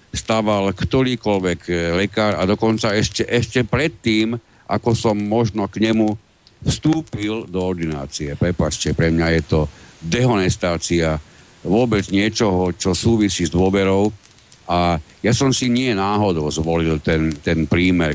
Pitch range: 85-110 Hz